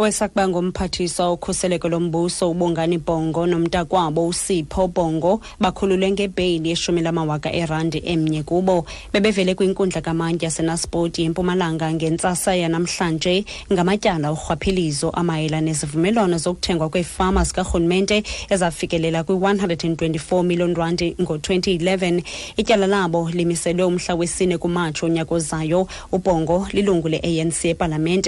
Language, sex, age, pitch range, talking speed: English, female, 30-49, 170-195 Hz, 115 wpm